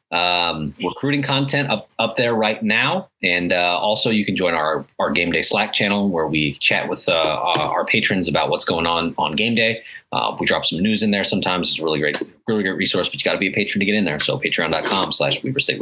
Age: 30-49